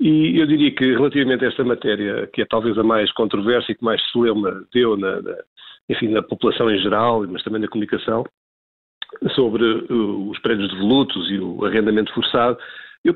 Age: 50-69